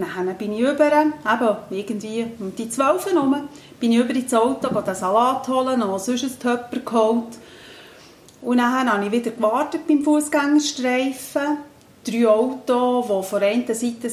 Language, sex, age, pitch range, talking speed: German, female, 40-59, 205-260 Hz, 155 wpm